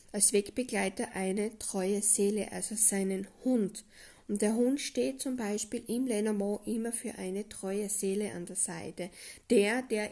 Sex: female